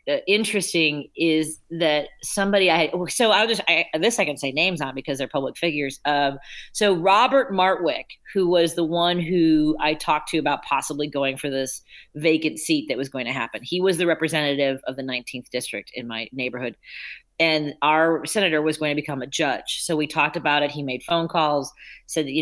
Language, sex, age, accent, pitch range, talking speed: English, female, 40-59, American, 140-170 Hz, 200 wpm